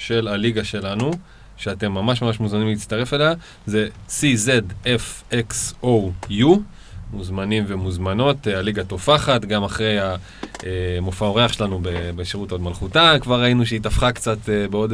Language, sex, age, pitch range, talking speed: Hebrew, male, 20-39, 100-130 Hz, 115 wpm